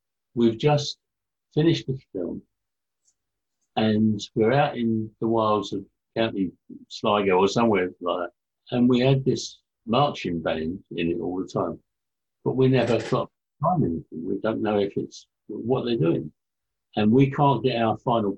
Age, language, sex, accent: 60-79, English, male, British